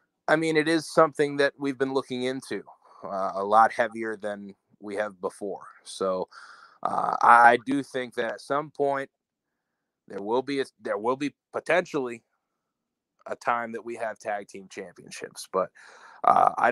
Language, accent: English, American